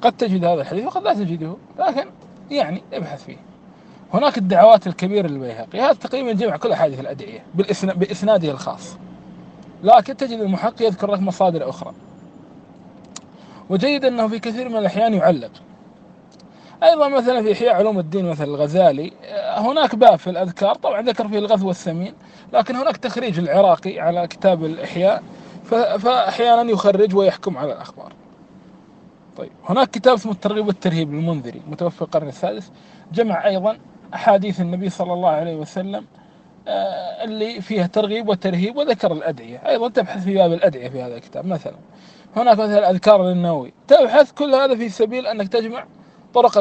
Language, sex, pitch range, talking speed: Arabic, male, 185-235 Hz, 140 wpm